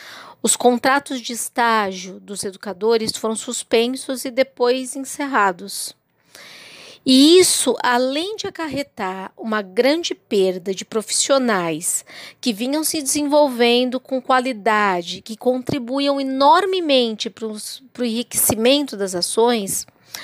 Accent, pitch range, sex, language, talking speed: Brazilian, 215-285 Hz, female, Portuguese, 105 wpm